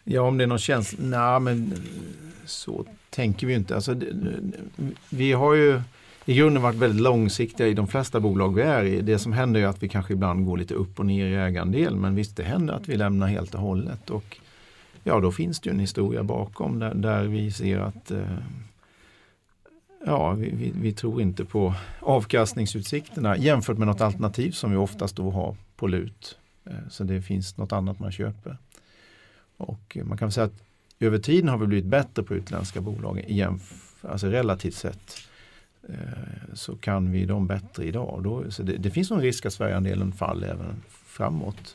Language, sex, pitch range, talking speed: Swedish, male, 95-120 Hz, 190 wpm